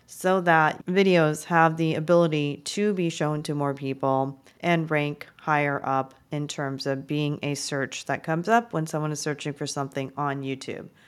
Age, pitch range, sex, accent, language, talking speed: 40-59, 145-175 Hz, female, American, English, 180 wpm